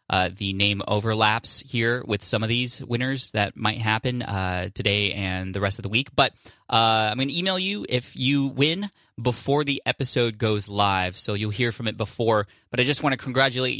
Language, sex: English, male